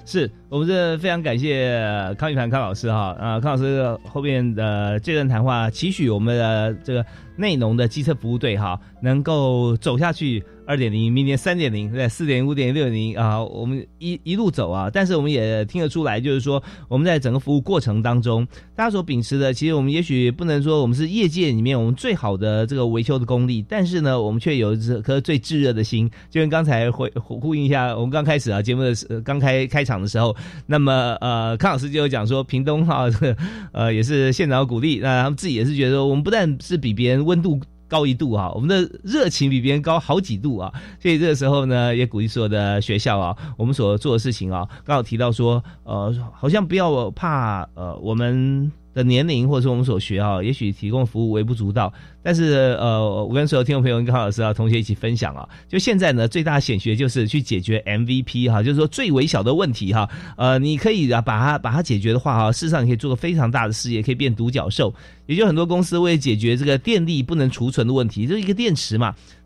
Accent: native